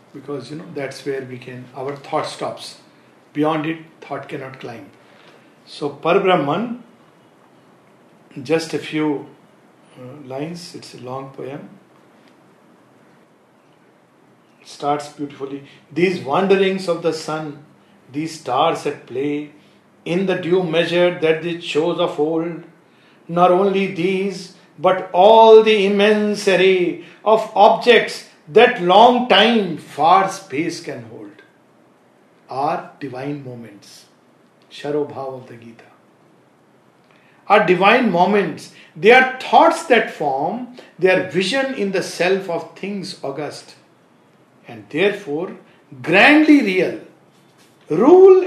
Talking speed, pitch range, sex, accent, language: 110 wpm, 145-195 Hz, male, Indian, English